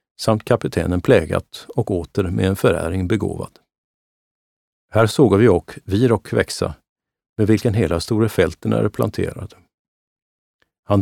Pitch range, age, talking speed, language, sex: 90-115 Hz, 50-69, 130 wpm, Swedish, male